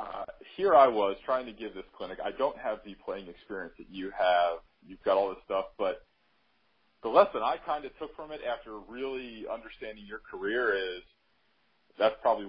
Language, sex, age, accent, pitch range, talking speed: English, male, 40-59, American, 95-135 Hz, 190 wpm